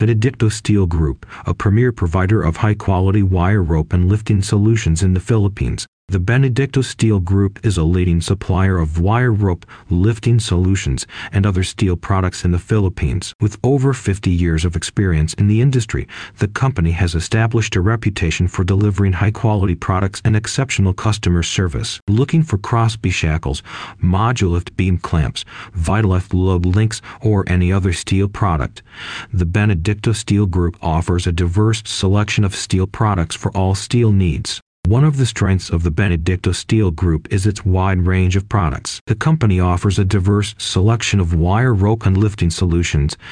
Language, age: English, 40-59